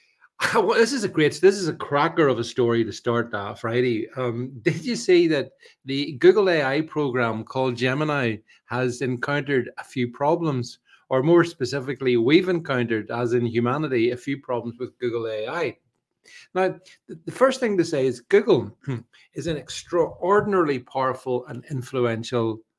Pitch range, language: 125-170 Hz, English